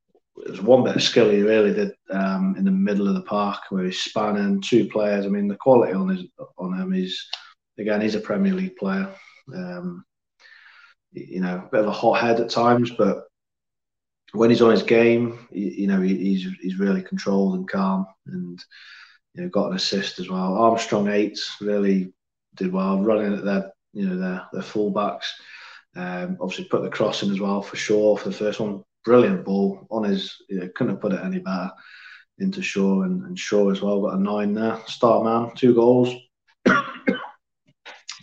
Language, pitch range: English, 95-125 Hz